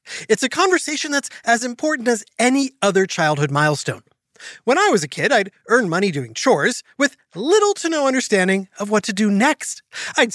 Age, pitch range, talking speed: 30-49, 165-255 Hz, 185 wpm